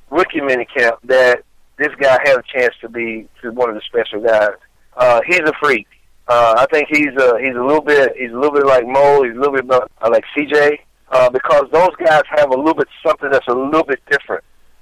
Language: English